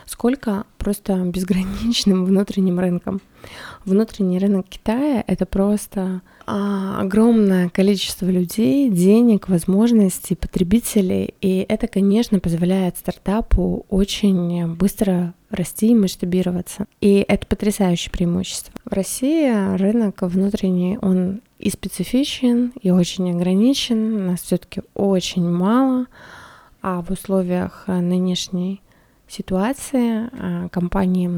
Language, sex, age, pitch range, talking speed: Russian, female, 20-39, 185-215 Hz, 100 wpm